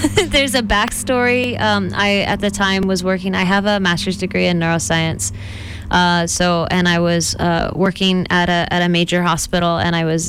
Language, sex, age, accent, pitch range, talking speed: English, female, 20-39, American, 165-190 Hz, 190 wpm